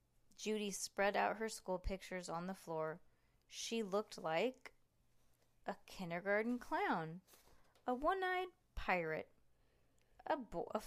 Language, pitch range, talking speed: English, 185-245 Hz, 110 wpm